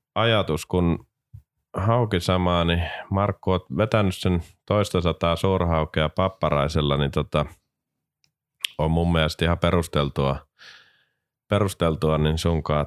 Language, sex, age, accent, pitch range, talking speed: Finnish, male, 30-49, native, 75-95 Hz, 105 wpm